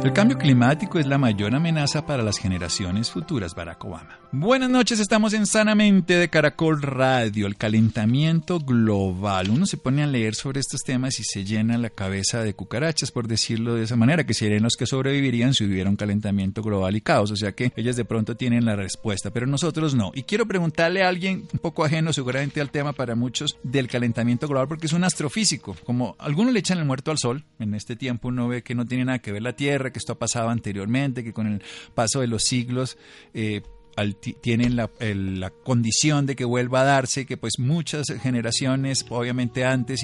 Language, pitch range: Spanish, 110-140 Hz